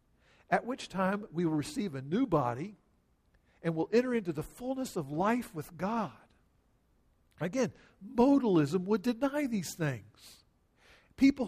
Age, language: 50-69, English